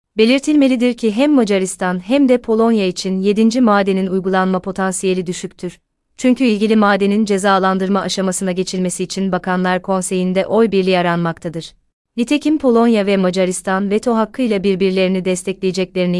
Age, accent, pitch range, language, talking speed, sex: 30-49, native, 185-215 Hz, Turkish, 120 wpm, female